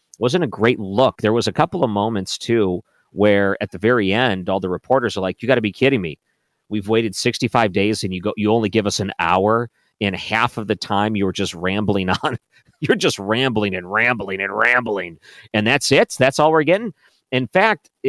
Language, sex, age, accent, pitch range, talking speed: English, male, 40-59, American, 100-125 Hz, 220 wpm